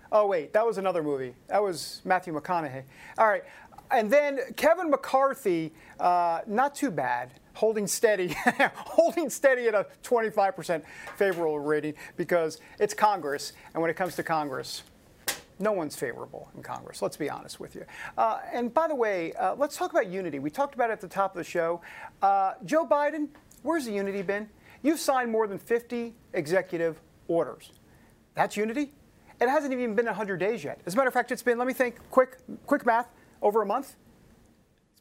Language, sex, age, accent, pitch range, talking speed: English, male, 50-69, American, 175-265 Hz, 185 wpm